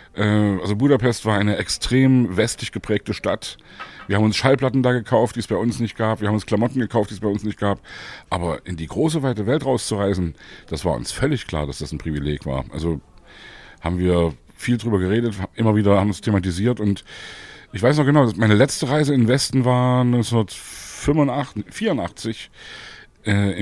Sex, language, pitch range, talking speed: male, German, 100-130 Hz, 190 wpm